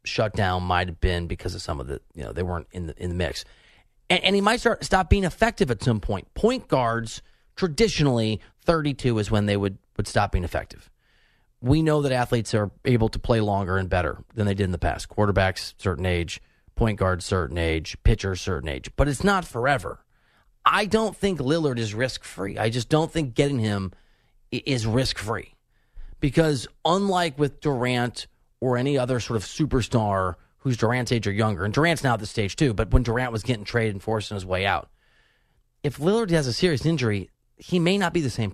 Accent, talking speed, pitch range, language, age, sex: American, 210 wpm, 100-145 Hz, English, 30-49, male